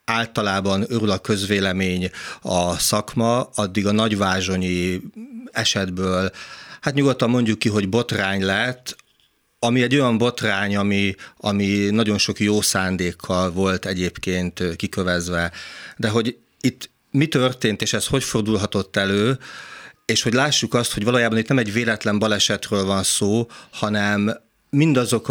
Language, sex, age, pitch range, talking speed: Hungarian, male, 40-59, 95-115 Hz, 130 wpm